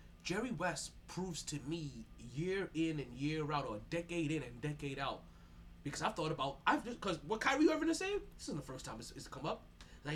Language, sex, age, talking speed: English, male, 20-39, 220 wpm